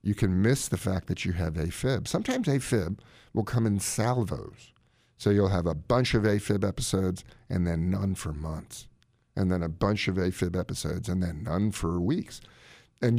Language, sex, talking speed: English, male, 185 wpm